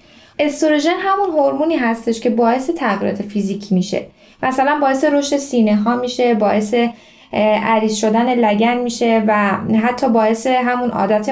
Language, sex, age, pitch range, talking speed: Persian, female, 10-29, 215-295 Hz, 135 wpm